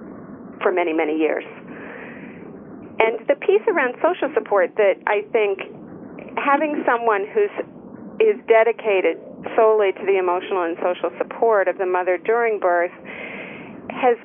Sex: female